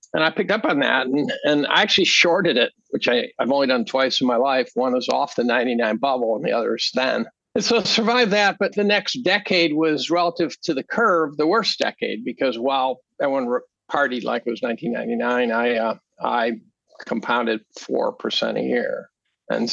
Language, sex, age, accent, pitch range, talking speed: English, male, 50-69, American, 130-170 Hz, 200 wpm